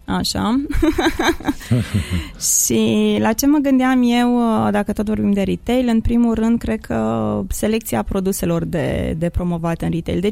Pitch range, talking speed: 180-240 Hz, 145 wpm